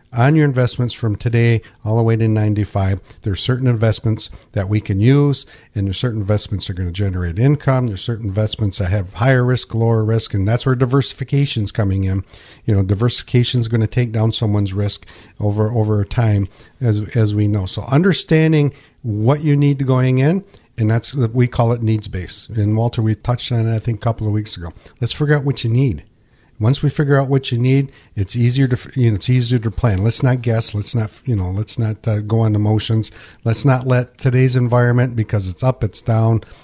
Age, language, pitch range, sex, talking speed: 50-69, English, 105-125 Hz, male, 220 wpm